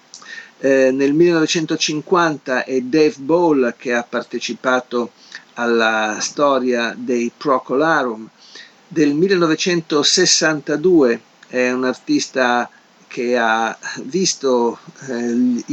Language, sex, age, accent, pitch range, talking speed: Italian, male, 50-69, native, 115-155 Hz, 85 wpm